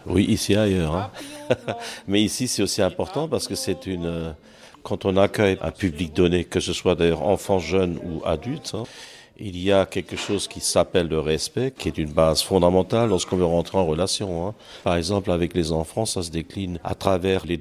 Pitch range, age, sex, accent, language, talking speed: 85-110 Hz, 50-69, male, French, French, 205 wpm